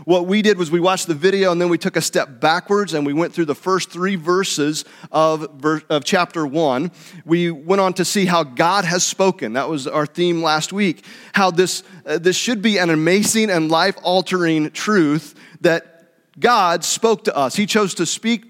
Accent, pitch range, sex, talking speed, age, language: American, 165-210 Hz, male, 205 wpm, 40-59, English